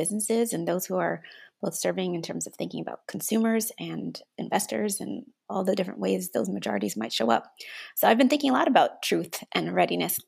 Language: English